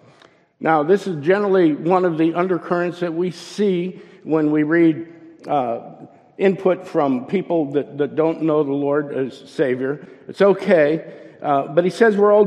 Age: 50-69